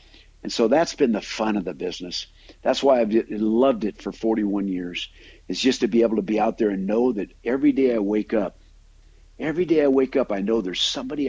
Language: English